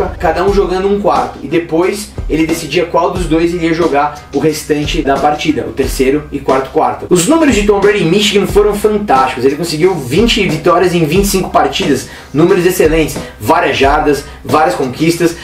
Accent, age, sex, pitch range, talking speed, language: Brazilian, 20-39, male, 155-200 Hz, 175 wpm, Portuguese